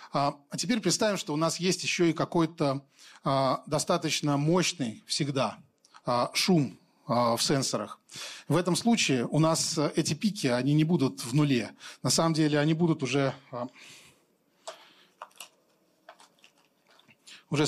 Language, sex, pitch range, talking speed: Russian, male, 135-165 Hz, 120 wpm